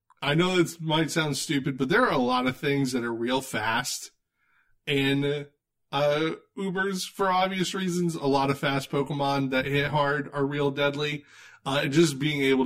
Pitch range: 125-165 Hz